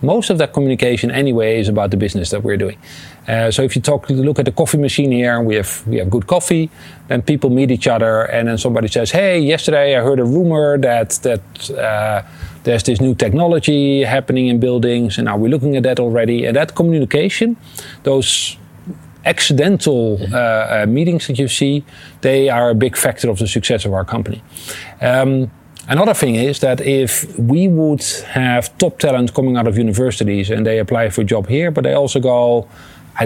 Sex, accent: male, Dutch